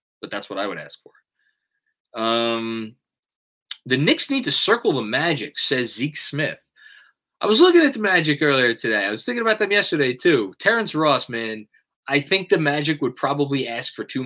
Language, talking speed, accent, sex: English, 190 wpm, American, male